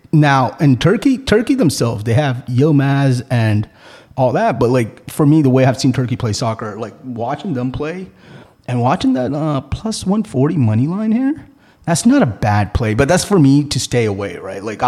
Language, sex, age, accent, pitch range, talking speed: English, male, 30-49, American, 105-135 Hz, 200 wpm